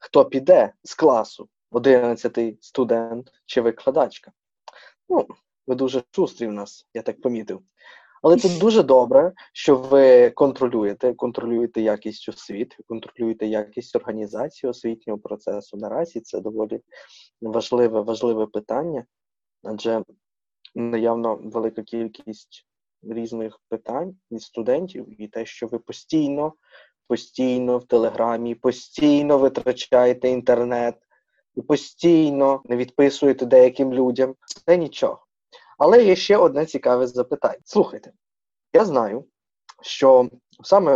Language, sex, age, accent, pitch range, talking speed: Ukrainian, male, 20-39, native, 115-150 Hz, 110 wpm